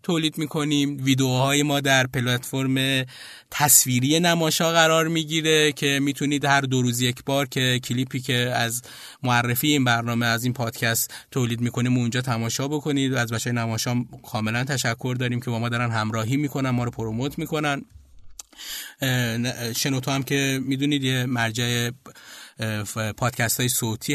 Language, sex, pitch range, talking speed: Persian, male, 120-140 Hz, 145 wpm